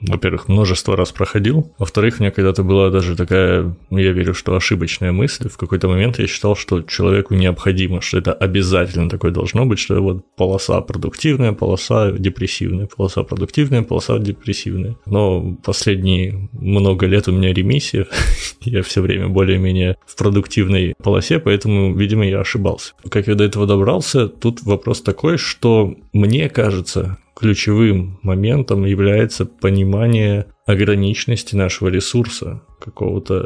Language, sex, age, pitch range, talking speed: Russian, male, 20-39, 95-110 Hz, 140 wpm